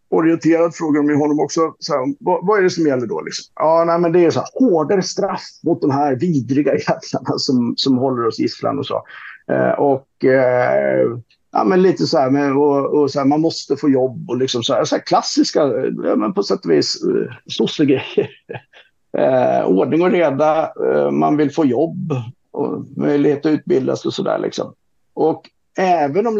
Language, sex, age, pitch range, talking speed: English, male, 50-69, 130-175 Hz, 205 wpm